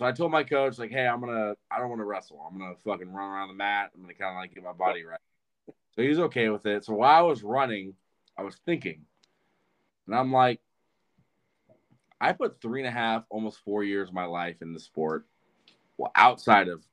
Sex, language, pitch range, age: male, English, 90-110 Hz, 20-39